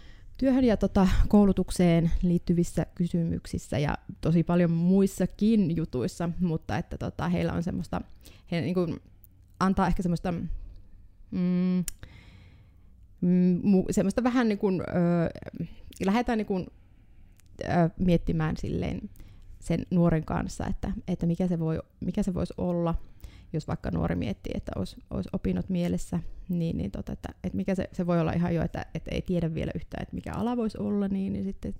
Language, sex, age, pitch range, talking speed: Finnish, female, 30-49, 145-195 Hz, 130 wpm